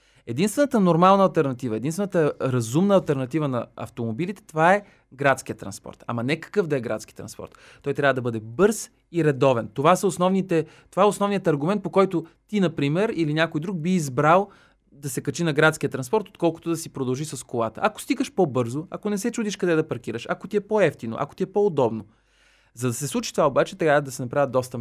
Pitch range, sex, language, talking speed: 135-185 Hz, male, Bulgarian, 205 wpm